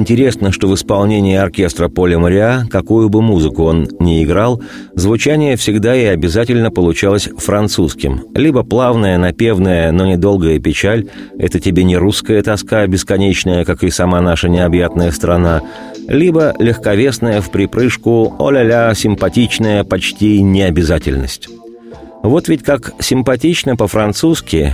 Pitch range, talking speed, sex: 90-115 Hz, 120 wpm, male